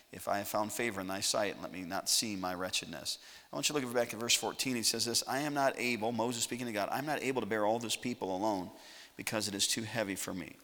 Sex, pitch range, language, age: male, 100-130 Hz, English, 40-59